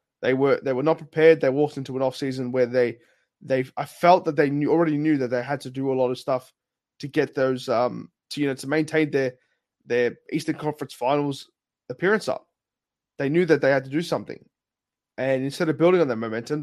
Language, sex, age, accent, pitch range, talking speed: English, male, 20-39, Australian, 130-155 Hz, 220 wpm